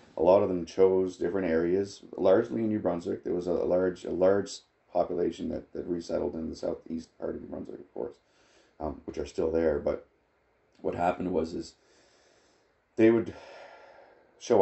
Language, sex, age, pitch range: English, male, 30-49, 80-95 Hz